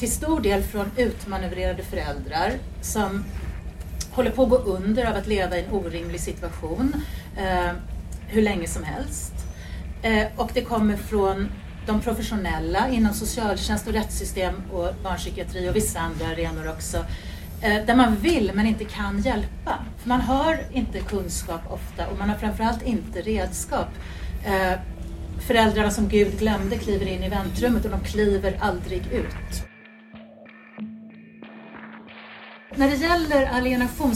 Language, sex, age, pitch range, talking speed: Swedish, female, 40-59, 195-245 Hz, 130 wpm